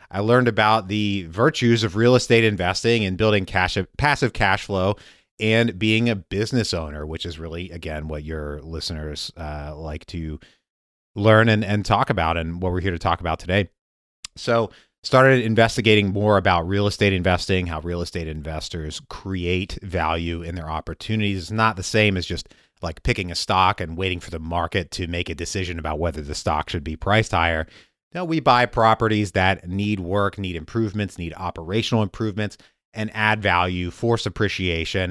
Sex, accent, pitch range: male, American, 85-110 Hz